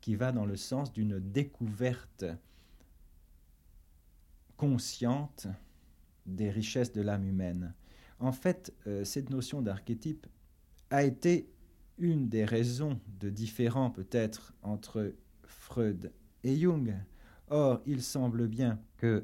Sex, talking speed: male, 110 wpm